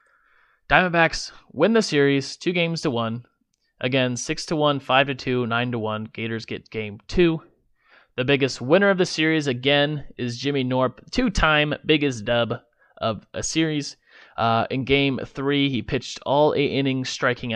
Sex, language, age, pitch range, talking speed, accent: male, English, 30-49, 115-145 Hz, 165 wpm, American